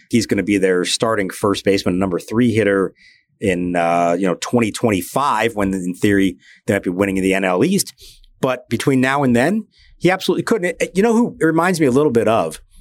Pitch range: 100-145 Hz